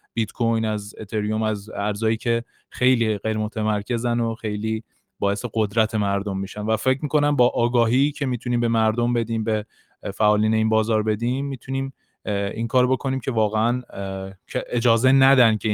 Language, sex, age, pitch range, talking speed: Persian, male, 20-39, 105-125 Hz, 155 wpm